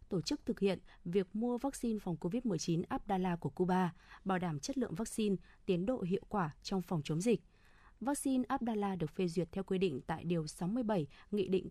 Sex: female